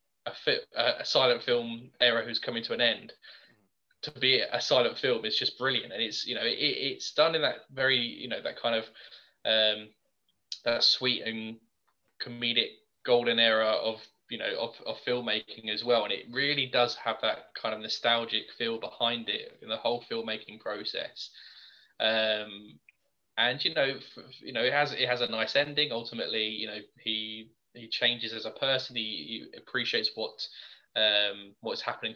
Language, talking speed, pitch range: English, 175 wpm, 110-125 Hz